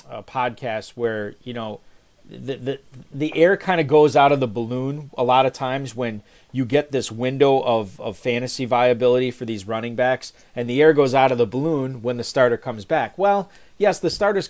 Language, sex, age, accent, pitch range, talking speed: English, male, 40-59, American, 120-155 Hz, 205 wpm